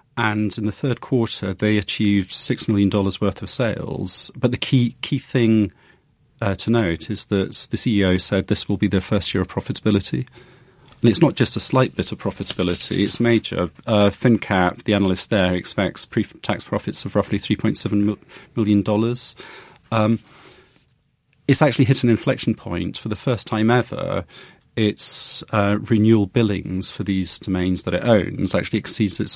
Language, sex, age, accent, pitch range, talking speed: English, male, 30-49, British, 100-120 Hz, 175 wpm